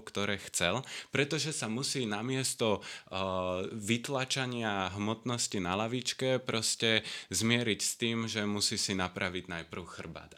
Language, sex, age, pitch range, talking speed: Slovak, male, 20-39, 100-130 Hz, 125 wpm